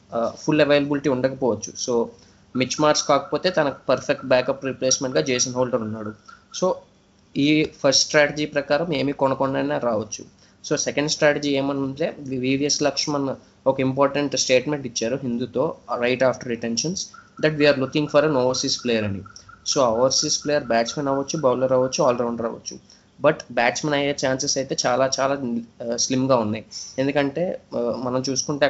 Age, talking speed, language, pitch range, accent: 20-39, 140 wpm, Telugu, 120-145 Hz, native